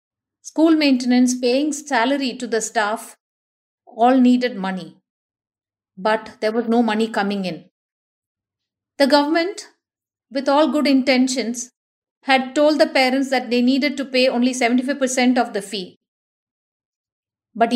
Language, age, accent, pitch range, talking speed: English, 50-69, Indian, 220-265 Hz, 130 wpm